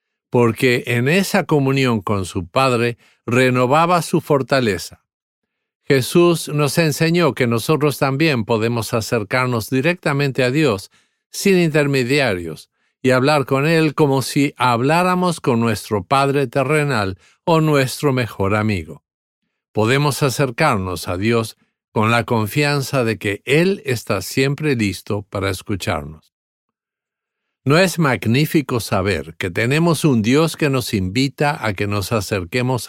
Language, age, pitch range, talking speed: English, 50-69, 110-155 Hz, 125 wpm